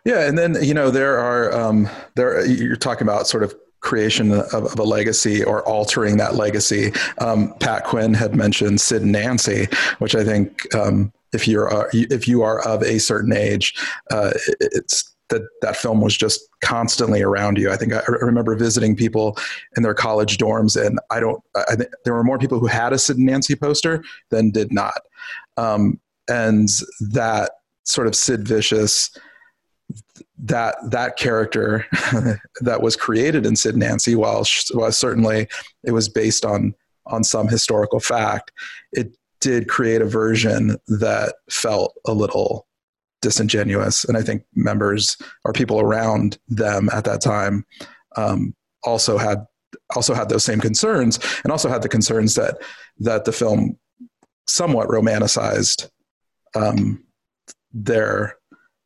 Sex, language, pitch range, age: male, English, 105-120 Hz, 40-59